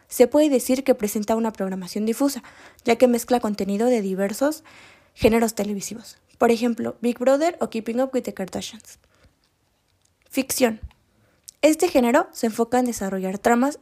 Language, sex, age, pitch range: Spanish, female, 20-39, 210-260 Hz